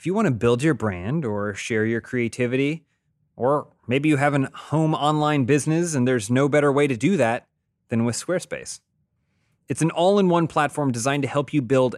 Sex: male